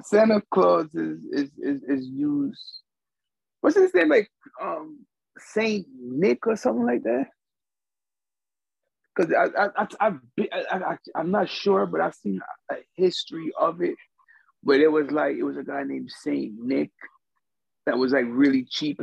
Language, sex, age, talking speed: English, male, 30-49, 160 wpm